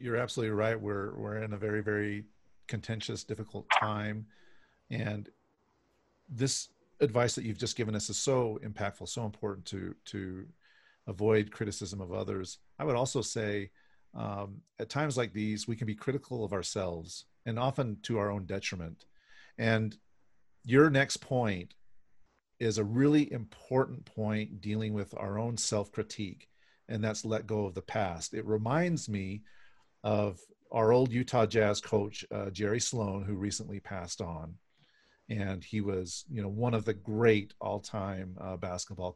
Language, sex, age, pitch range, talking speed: English, male, 40-59, 100-120 Hz, 155 wpm